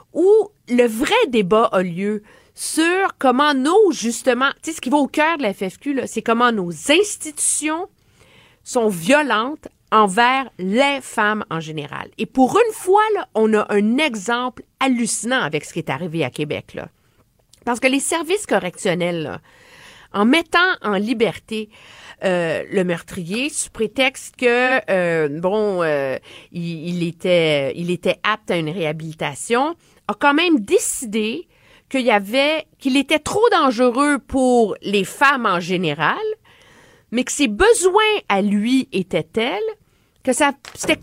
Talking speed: 150 wpm